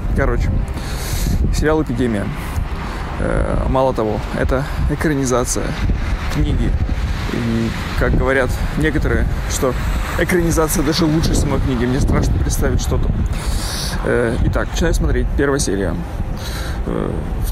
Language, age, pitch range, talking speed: Russian, 20-39, 90-125 Hz, 100 wpm